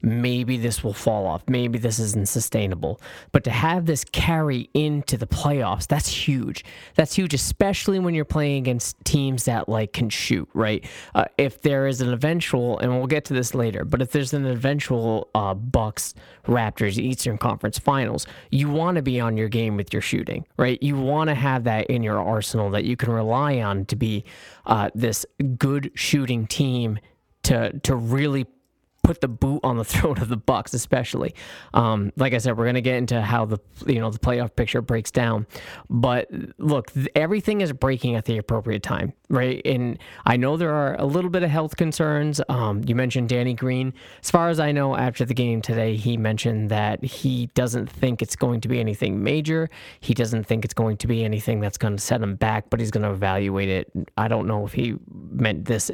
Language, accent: English, American